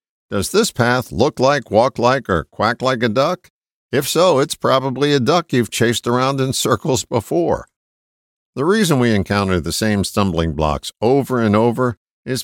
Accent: American